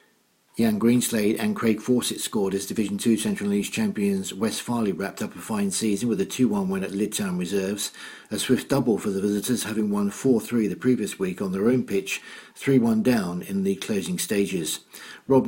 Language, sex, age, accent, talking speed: English, male, 50-69, British, 190 wpm